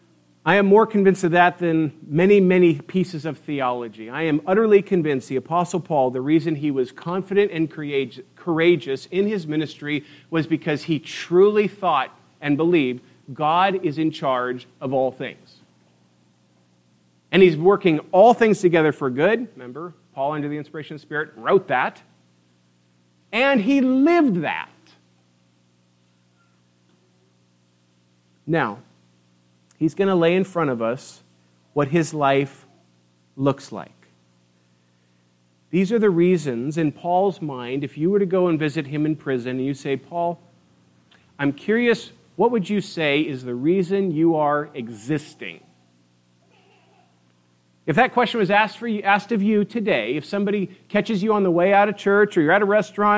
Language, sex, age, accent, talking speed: English, male, 40-59, American, 155 wpm